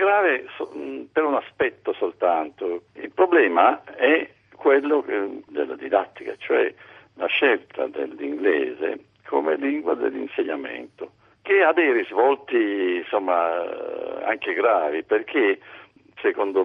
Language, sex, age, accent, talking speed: Italian, male, 60-79, native, 95 wpm